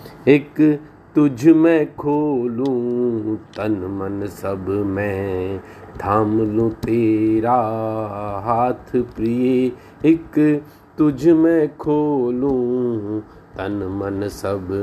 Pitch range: 100-135 Hz